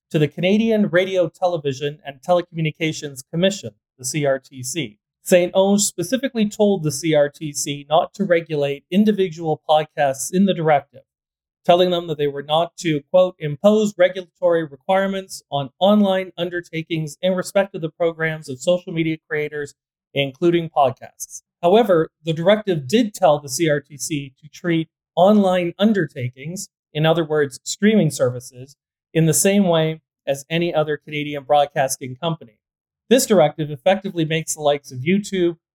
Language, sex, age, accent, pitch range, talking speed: English, male, 40-59, American, 145-180 Hz, 140 wpm